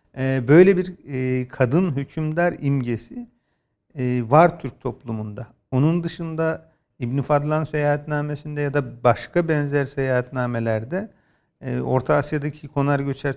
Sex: male